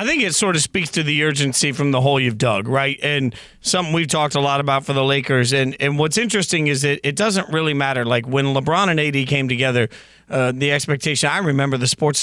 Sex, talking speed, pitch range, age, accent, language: male, 240 wpm, 135-165 Hz, 40-59, American, English